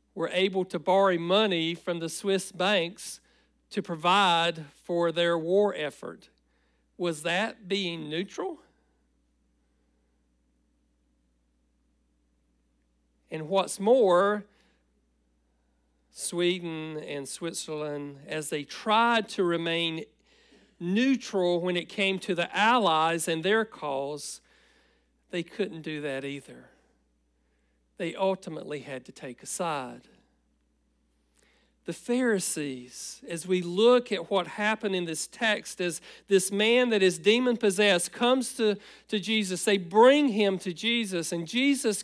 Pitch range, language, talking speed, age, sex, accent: 145-210 Hz, English, 115 wpm, 40-59, male, American